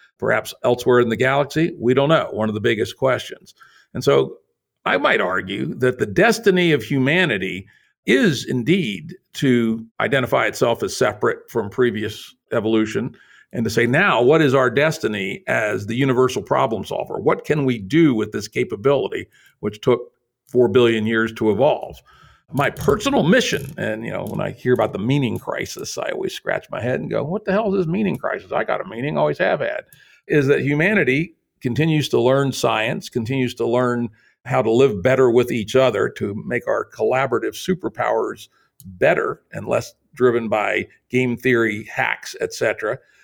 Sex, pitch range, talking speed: male, 115-160 Hz, 175 wpm